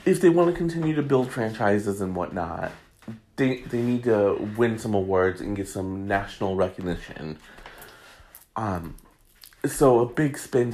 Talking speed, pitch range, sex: 150 wpm, 95-130 Hz, male